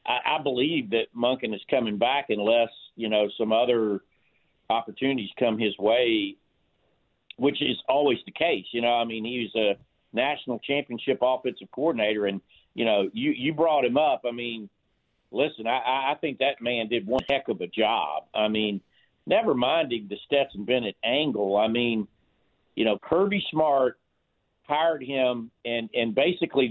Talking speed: 165 wpm